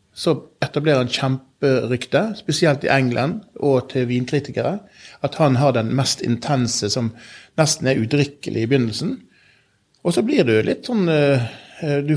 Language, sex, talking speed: English, male, 150 wpm